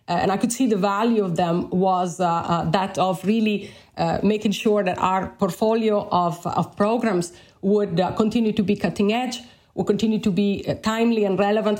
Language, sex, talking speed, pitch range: English, female, 195 wpm, 180-215 Hz